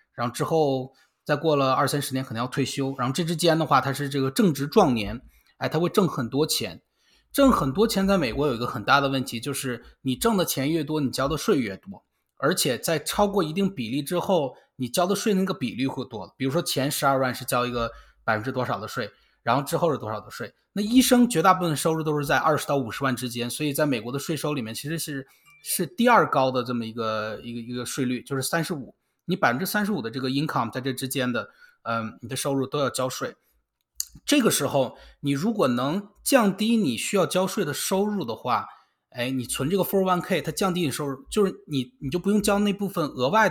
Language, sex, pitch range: Chinese, male, 130-185 Hz